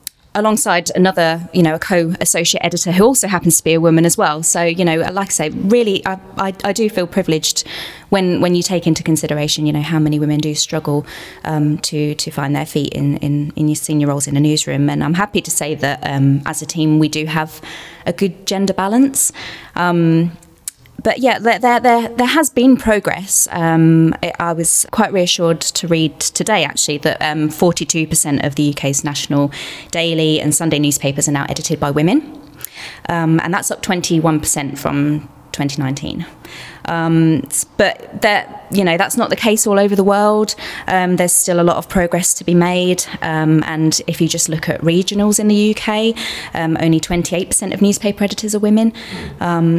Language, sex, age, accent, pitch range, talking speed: English, female, 20-39, British, 150-185 Hz, 190 wpm